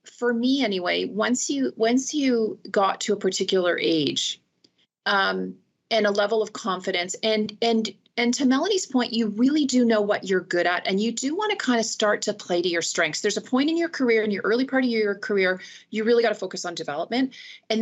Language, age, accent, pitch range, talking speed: English, 40-59, American, 185-235 Hz, 220 wpm